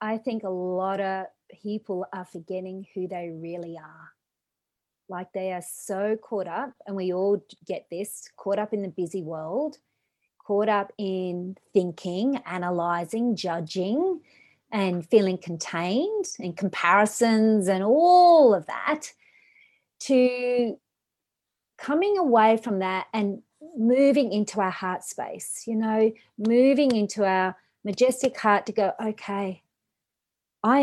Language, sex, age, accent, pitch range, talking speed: English, female, 30-49, Australian, 185-275 Hz, 130 wpm